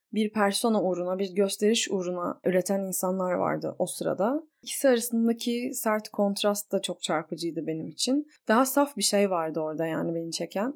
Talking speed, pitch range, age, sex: 160 wpm, 180-220 Hz, 20-39, female